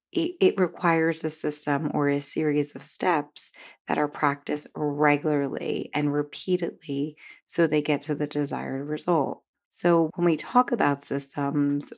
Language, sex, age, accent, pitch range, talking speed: English, female, 30-49, American, 145-165 Hz, 140 wpm